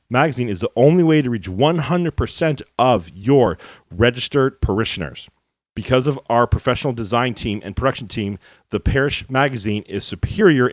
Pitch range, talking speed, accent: 105-135 Hz, 145 wpm, American